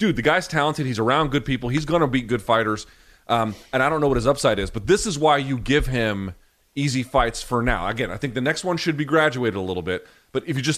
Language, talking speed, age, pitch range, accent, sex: English, 280 wpm, 30-49, 115-150 Hz, American, male